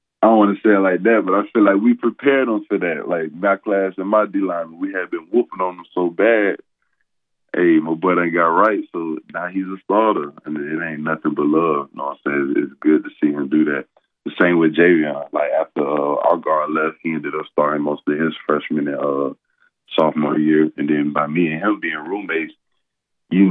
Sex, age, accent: male, 20-39, American